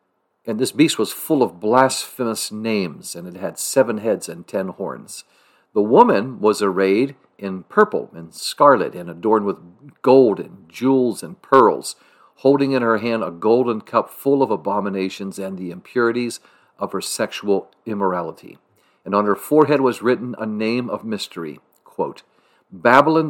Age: 50-69